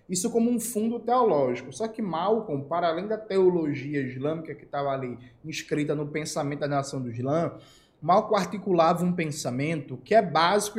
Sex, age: male, 20-39